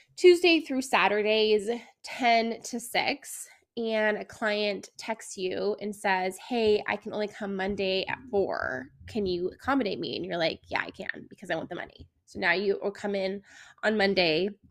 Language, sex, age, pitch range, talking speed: English, female, 20-39, 205-245 Hz, 180 wpm